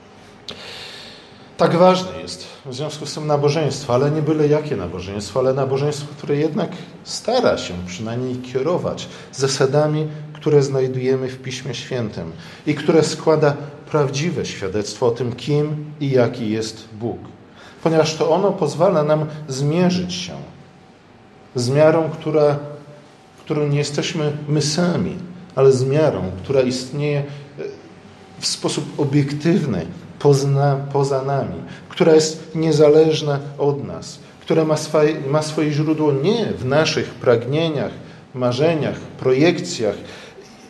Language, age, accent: Polish, 40-59, native